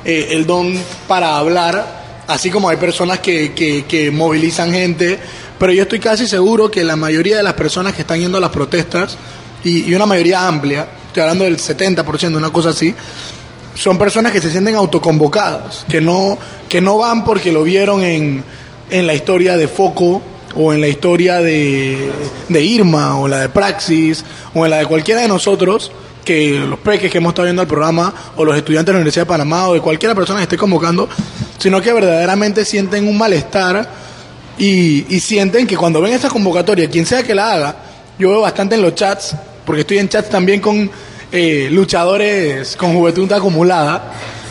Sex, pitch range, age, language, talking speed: male, 160-200 Hz, 20-39, Spanish, 190 wpm